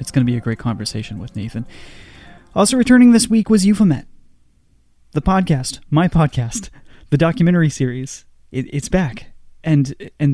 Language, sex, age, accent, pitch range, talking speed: English, male, 30-49, American, 120-145 Hz, 160 wpm